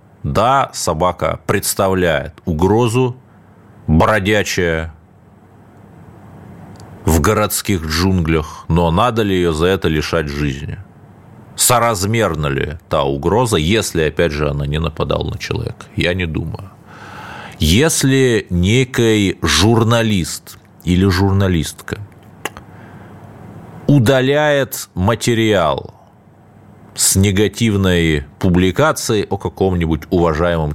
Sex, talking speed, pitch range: male, 85 wpm, 85-110 Hz